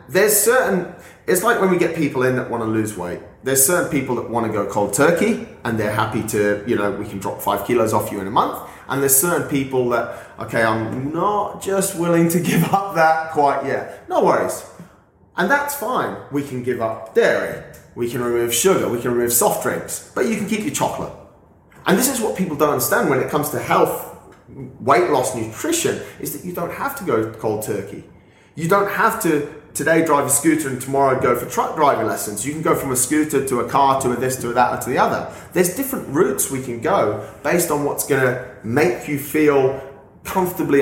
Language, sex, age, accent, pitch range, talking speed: English, male, 30-49, British, 110-155 Hz, 225 wpm